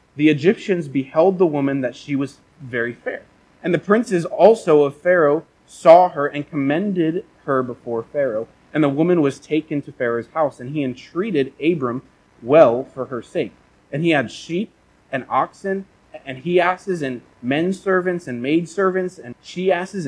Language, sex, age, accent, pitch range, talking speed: English, male, 30-49, American, 130-170 Hz, 170 wpm